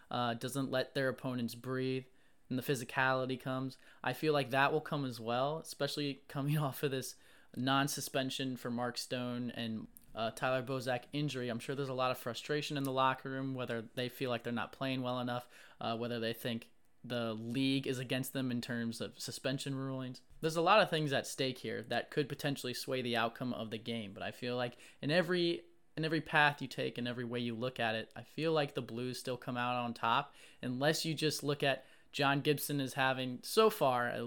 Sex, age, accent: male, 20-39, American